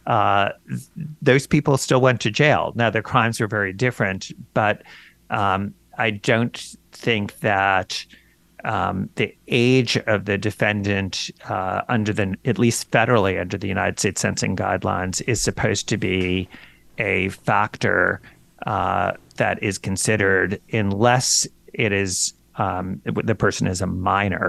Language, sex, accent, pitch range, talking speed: English, male, American, 95-115 Hz, 135 wpm